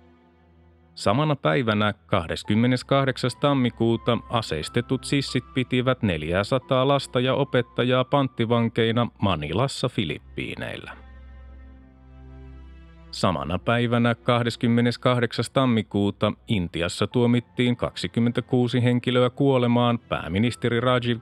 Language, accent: Finnish, native